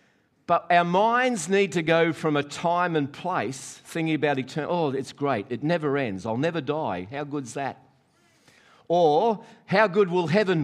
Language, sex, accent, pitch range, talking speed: English, male, Australian, 130-175 Hz, 175 wpm